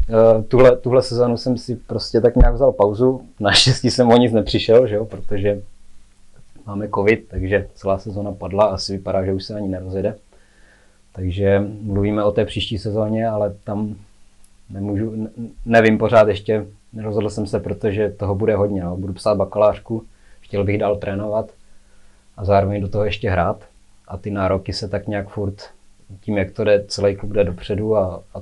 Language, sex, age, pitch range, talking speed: Czech, male, 20-39, 100-110 Hz, 175 wpm